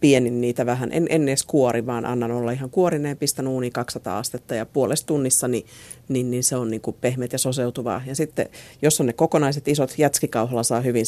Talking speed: 200 wpm